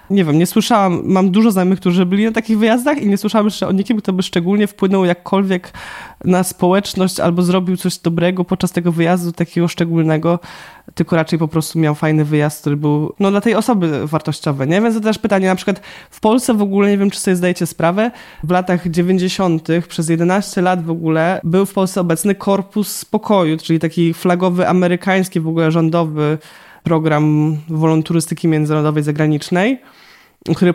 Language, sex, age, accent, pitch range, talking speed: Polish, male, 20-39, native, 160-190 Hz, 180 wpm